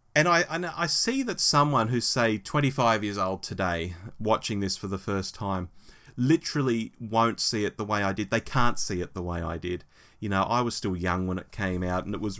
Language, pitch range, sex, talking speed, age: English, 95-125 Hz, male, 230 wpm, 30-49